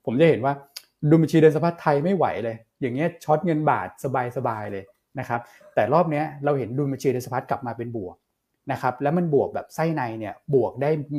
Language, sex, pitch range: Thai, male, 120-150 Hz